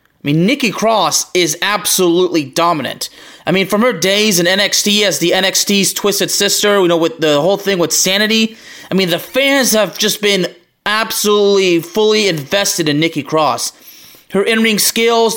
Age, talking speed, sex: 20-39, 170 wpm, male